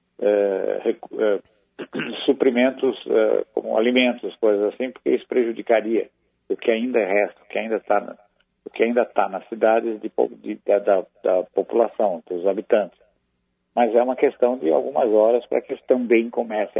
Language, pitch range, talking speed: Portuguese, 105-120 Hz, 155 wpm